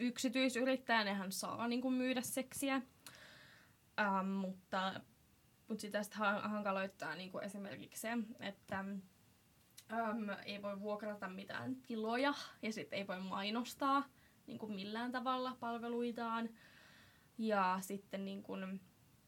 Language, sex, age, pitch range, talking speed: Finnish, female, 10-29, 200-230 Hz, 110 wpm